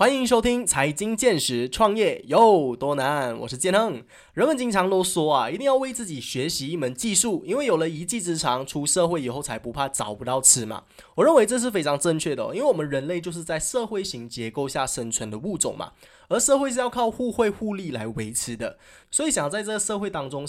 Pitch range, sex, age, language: 130-215 Hz, male, 20-39, Chinese